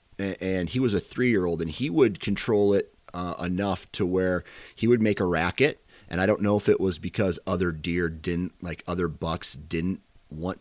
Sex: male